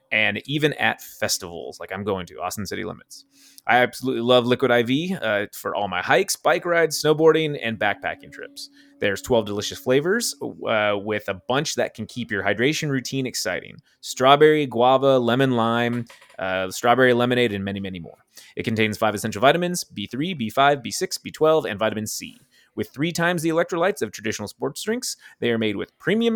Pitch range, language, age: 115-165 Hz, English, 30-49